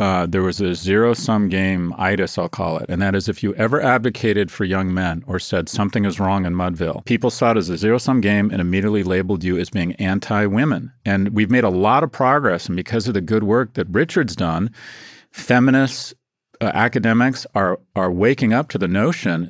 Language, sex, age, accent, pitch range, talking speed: English, male, 40-59, American, 95-125 Hz, 200 wpm